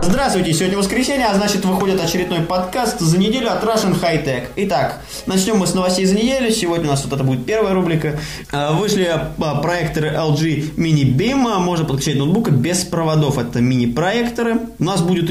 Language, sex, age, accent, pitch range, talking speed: Russian, male, 20-39, native, 135-180 Hz, 170 wpm